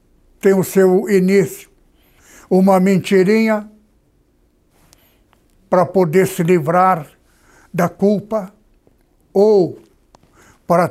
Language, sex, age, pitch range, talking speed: Portuguese, male, 60-79, 175-205 Hz, 75 wpm